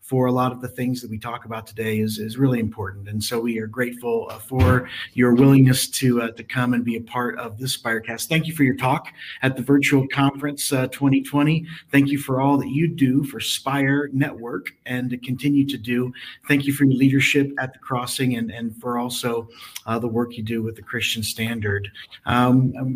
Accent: American